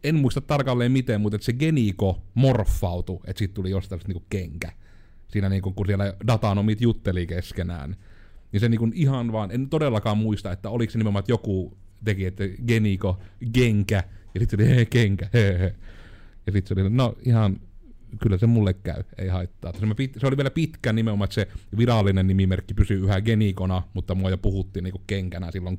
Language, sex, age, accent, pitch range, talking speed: Finnish, male, 30-49, native, 95-115 Hz, 185 wpm